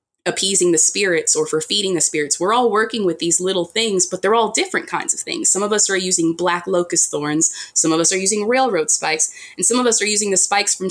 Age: 20-39